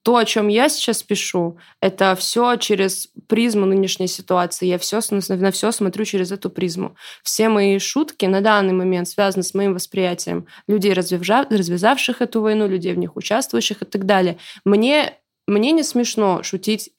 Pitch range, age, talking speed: 180-215 Hz, 20-39, 165 wpm